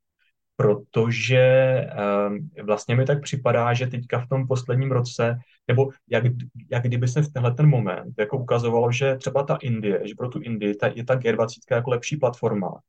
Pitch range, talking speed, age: 105-125 Hz, 175 wpm, 20-39